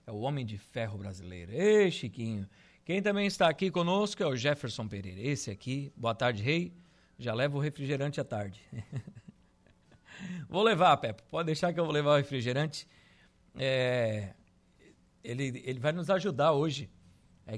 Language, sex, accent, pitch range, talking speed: Portuguese, male, Brazilian, 115-150 Hz, 155 wpm